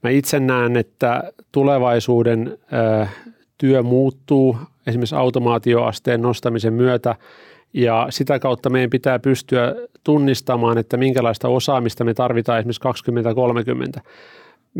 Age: 40-59